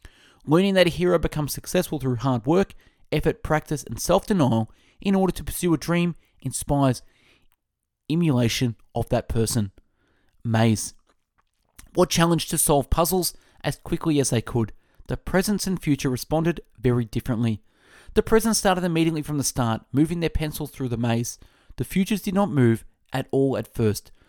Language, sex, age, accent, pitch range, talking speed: English, male, 20-39, Australian, 115-170 Hz, 160 wpm